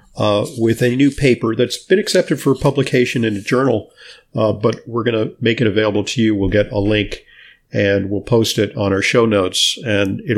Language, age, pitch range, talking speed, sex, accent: English, 50-69, 105-135 Hz, 215 wpm, male, American